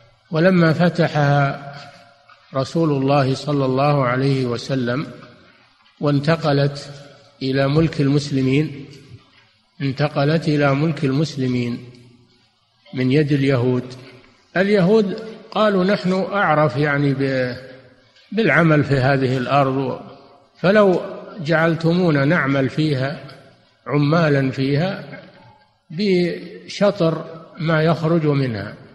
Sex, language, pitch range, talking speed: male, Arabic, 130-165 Hz, 80 wpm